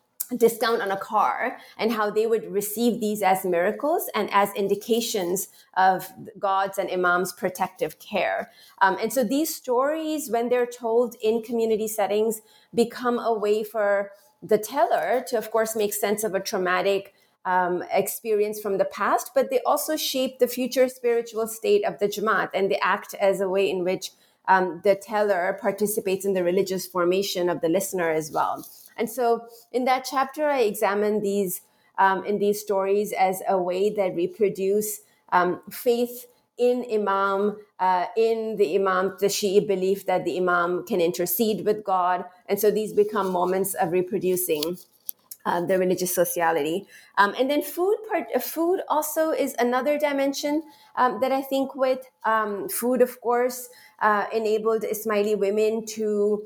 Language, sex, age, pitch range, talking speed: English, female, 30-49, 195-240 Hz, 165 wpm